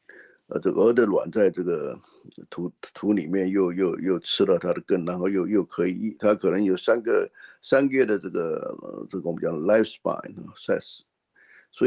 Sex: male